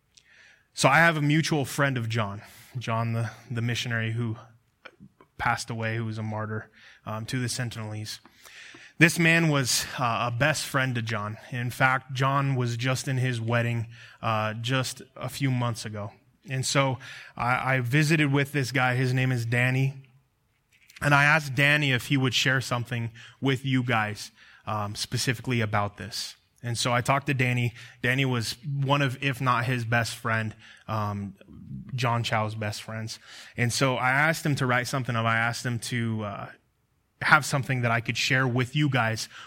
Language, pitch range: English, 115-135 Hz